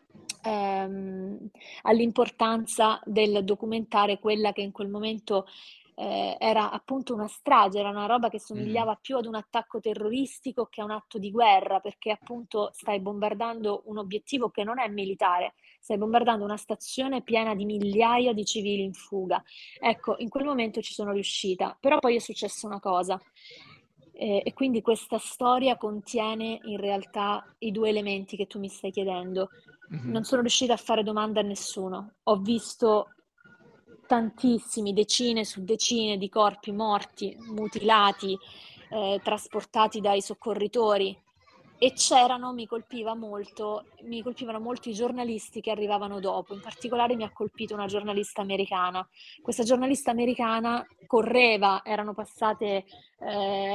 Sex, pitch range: female, 200-230 Hz